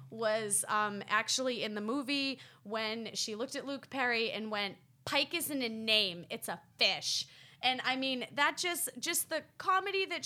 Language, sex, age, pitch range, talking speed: English, female, 20-39, 210-275 Hz, 175 wpm